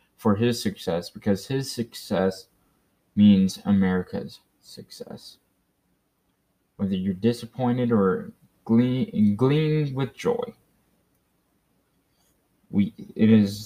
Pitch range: 100-125 Hz